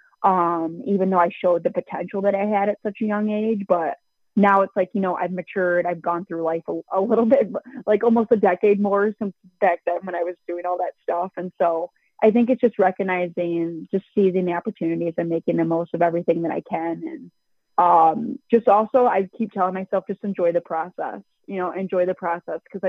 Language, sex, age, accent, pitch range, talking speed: English, female, 20-39, American, 175-205 Hz, 220 wpm